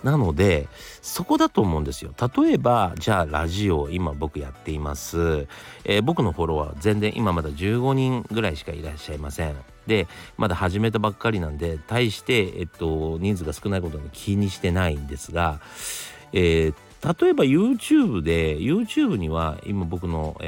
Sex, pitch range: male, 80-135 Hz